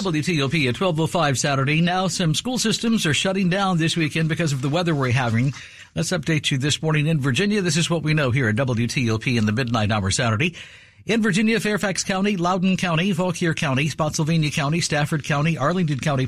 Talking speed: 195 wpm